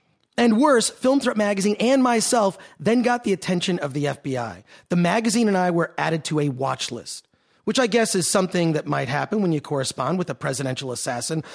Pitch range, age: 150-210 Hz, 30-49